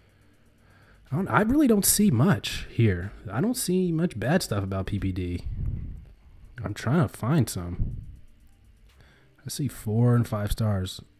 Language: English